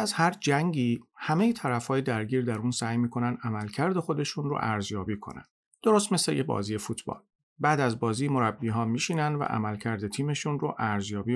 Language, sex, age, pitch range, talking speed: Persian, male, 40-59, 110-145 Hz, 180 wpm